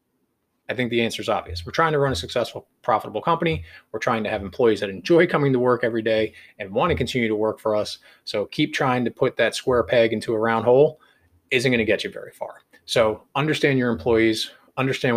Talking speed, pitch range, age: 230 wpm, 115-165 Hz, 20-39